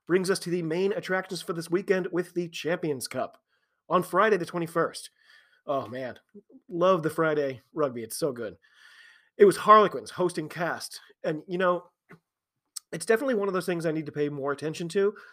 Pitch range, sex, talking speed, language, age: 155-205 Hz, male, 185 wpm, English, 30-49